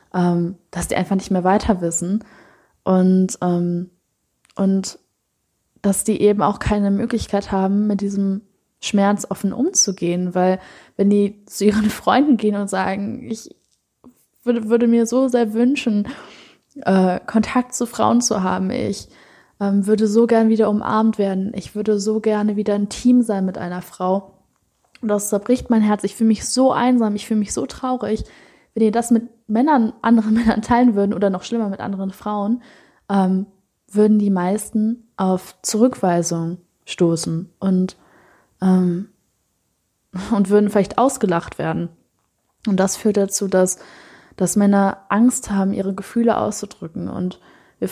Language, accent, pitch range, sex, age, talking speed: German, German, 190-225 Hz, female, 10-29, 150 wpm